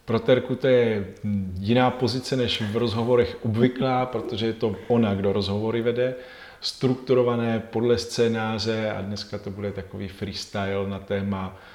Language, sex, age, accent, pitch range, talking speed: Czech, male, 40-59, native, 100-115 Hz, 145 wpm